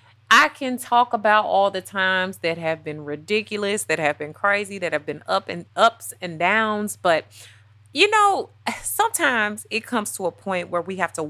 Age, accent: 30-49, American